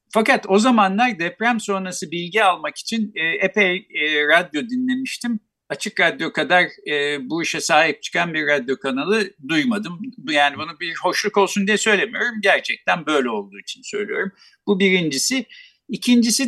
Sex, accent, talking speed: male, native, 135 wpm